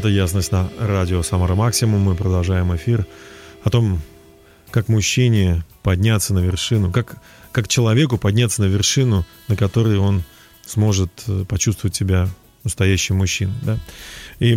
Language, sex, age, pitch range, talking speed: Russian, male, 30-49, 95-115 Hz, 130 wpm